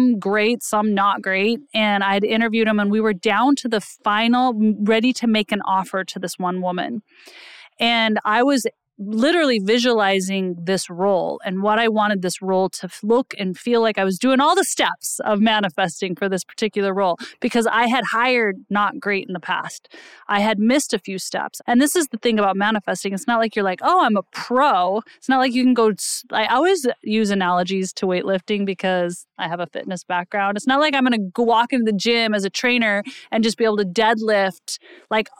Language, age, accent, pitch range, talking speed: English, 30-49, American, 195-235 Hz, 210 wpm